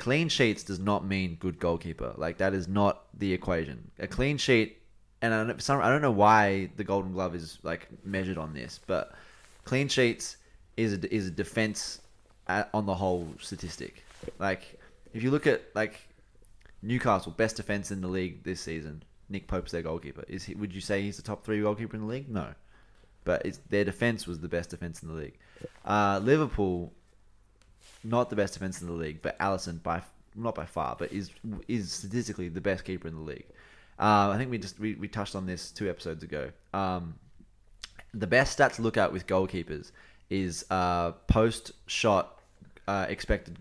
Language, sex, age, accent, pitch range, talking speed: English, male, 20-39, Australian, 90-105 Hz, 190 wpm